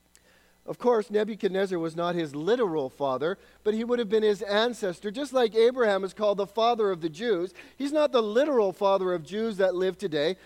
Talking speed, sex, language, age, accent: 200 wpm, male, English, 40-59, American